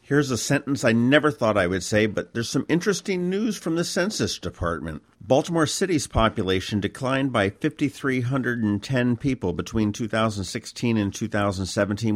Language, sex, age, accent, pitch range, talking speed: English, male, 50-69, American, 95-120 Hz, 145 wpm